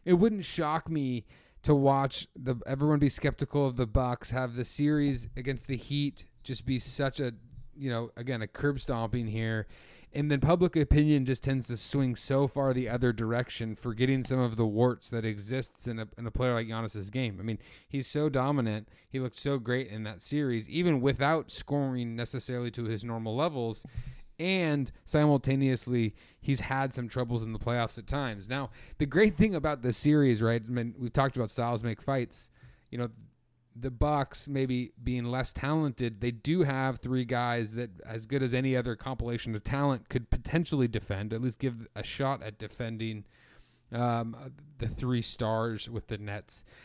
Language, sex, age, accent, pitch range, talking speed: English, male, 30-49, American, 115-140 Hz, 185 wpm